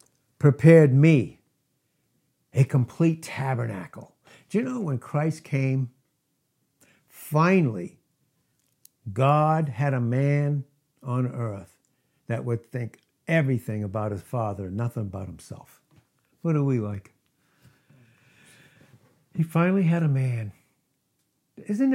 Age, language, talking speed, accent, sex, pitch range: 60-79, English, 105 wpm, American, male, 125-150 Hz